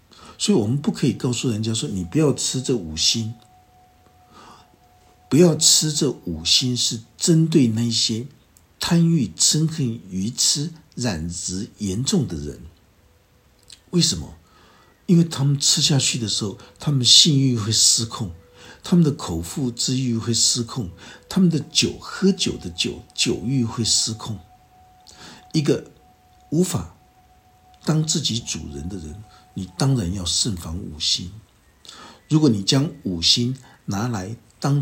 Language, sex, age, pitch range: Chinese, male, 60-79, 90-130 Hz